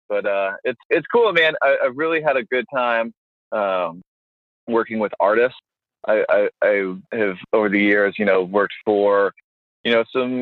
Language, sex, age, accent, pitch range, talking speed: English, male, 20-39, American, 100-120 Hz, 175 wpm